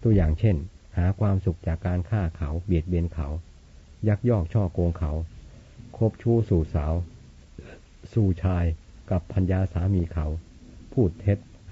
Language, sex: Thai, male